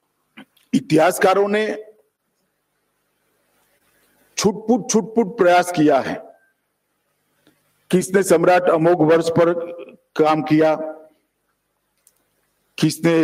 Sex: male